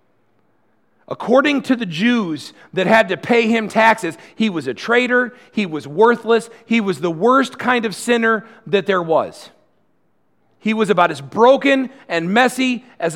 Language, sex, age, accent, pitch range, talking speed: English, male, 40-59, American, 155-230 Hz, 160 wpm